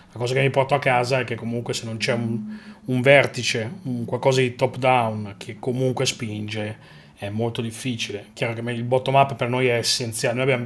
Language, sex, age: Italian, male, 30-49